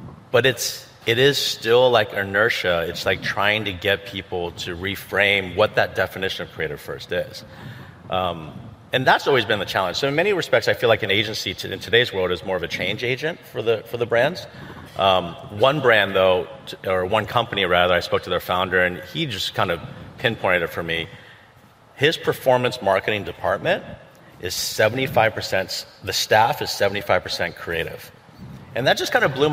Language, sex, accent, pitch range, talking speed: English, male, American, 95-130 Hz, 185 wpm